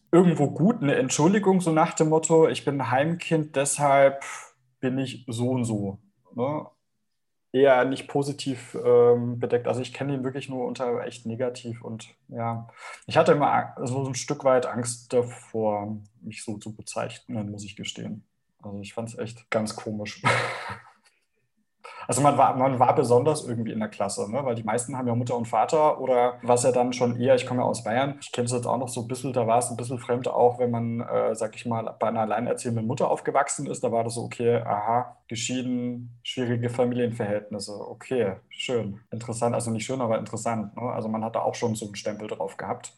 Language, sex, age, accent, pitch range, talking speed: German, male, 20-39, German, 115-130 Hz, 200 wpm